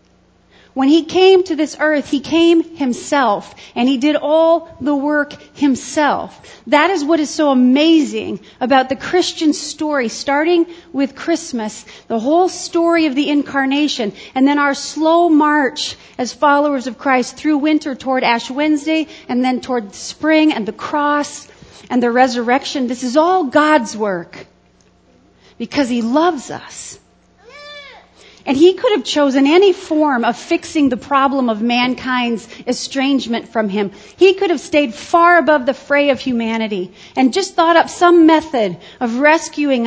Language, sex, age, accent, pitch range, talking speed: English, female, 40-59, American, 250-315 Hz, 155 wpm